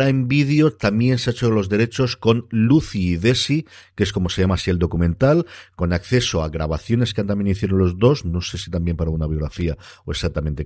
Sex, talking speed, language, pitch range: male, 215 wpm, Spanish, 85-110 Hz